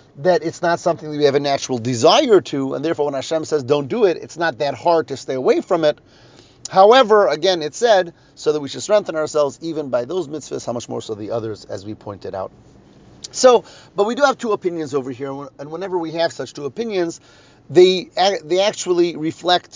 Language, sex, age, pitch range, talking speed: English, male, 40-59, 130-170 Hz, 220 wpm